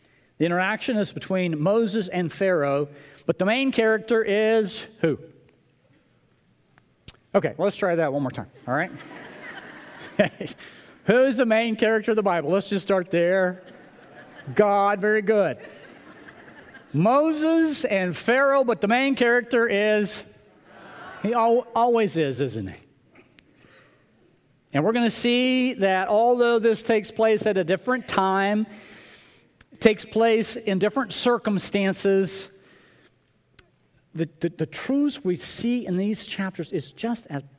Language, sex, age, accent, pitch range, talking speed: English, male, 40-59, American, 160-220 Hz, 130 wpm